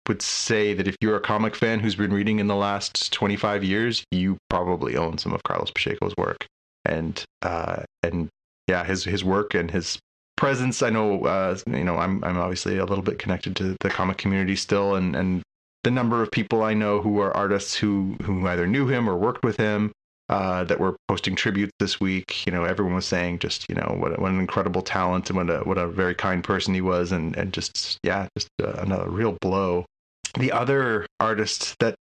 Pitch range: 95-115 Hz